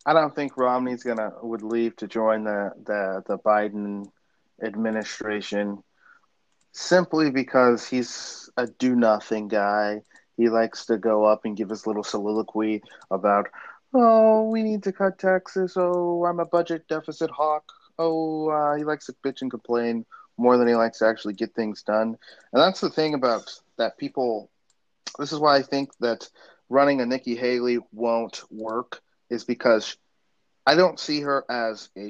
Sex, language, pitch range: male, English, 110-140 Hz